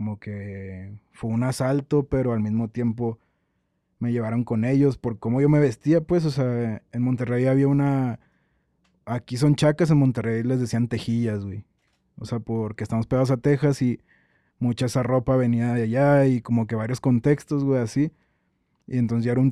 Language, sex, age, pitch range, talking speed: English, male, 20-39, 110-130 Hz, 180 wpm